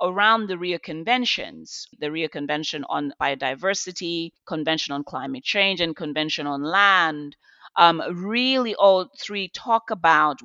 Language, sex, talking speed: English, female, 130 wpm